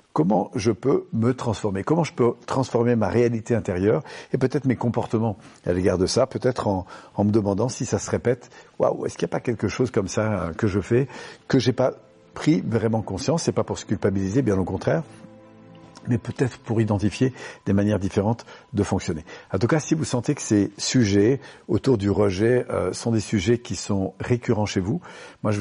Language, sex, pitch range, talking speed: French, male, 100-120 Hz, 210 wpm